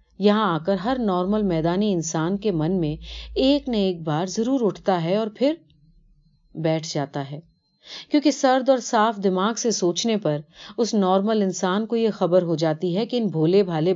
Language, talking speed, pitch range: Urdu, 150 wpm, 165-235 Hz